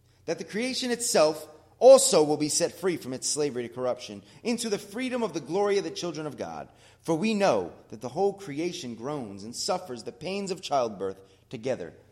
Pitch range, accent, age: 110-180 Hz, American, 30-49